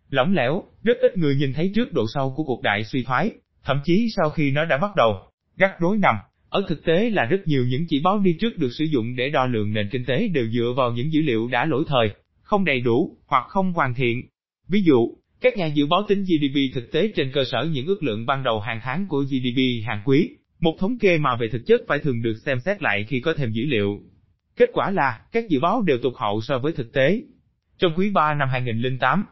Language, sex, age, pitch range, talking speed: Vietnamese, male, 20-39, 125-175 Hz, 250 wpm